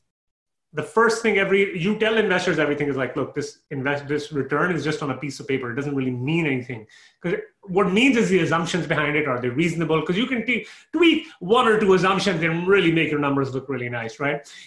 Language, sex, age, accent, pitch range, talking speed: English, male, 30-49, Indian, 145-200 Hz, 235 wpm